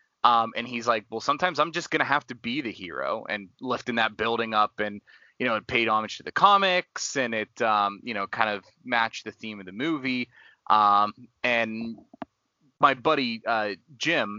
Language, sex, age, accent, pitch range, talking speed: English, male, 20-39, American, 105-125 Hz, 200 wpm